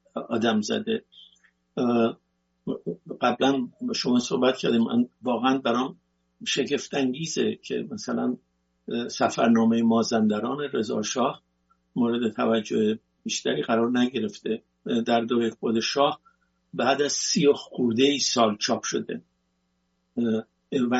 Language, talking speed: English, 90 wpm